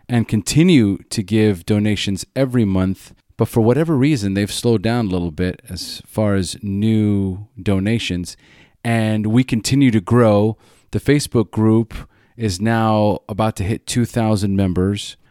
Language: English